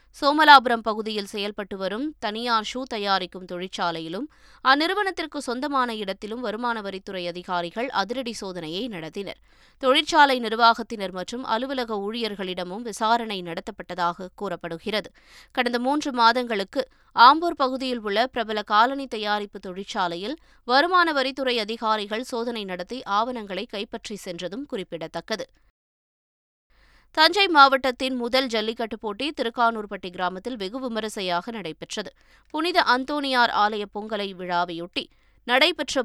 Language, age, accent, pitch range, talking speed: Tamil, 20-39, native, 195-260 Hz, 100 wpm